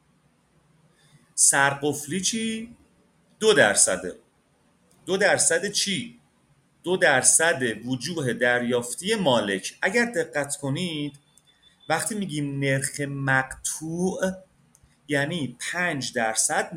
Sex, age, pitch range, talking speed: male, 30-49, 140-205 Hz, 80 wpm